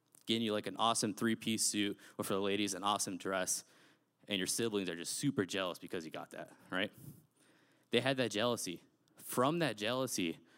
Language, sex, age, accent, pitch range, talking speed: English, male, 20-39, American, 100-120 Hz, 185 wpm